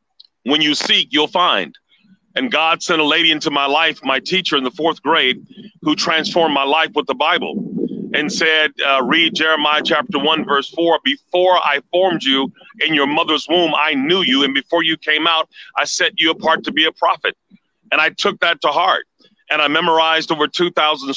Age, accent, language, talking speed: 40-59, American, English, 200 wpm